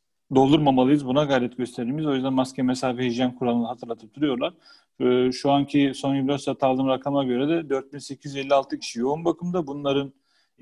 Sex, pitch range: male, 130-170 Hz